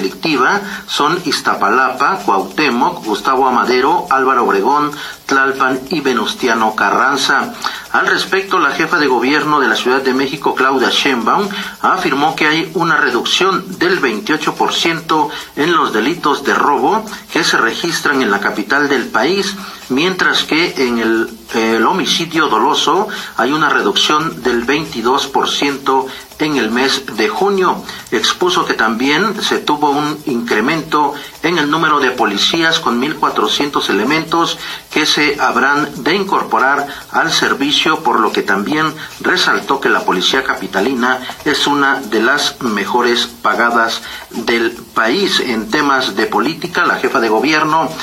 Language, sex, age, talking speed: Spanish, male, 50-69, 135 wpm